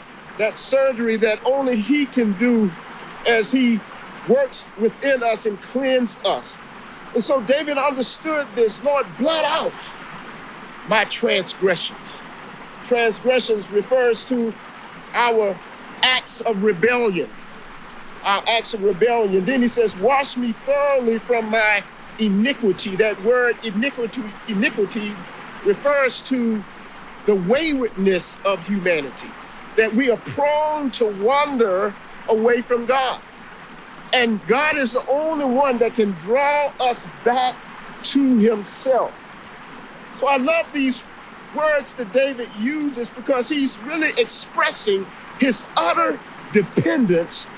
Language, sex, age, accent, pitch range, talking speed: English, male, 50-69, American, 220-270 Hz, 115 wpm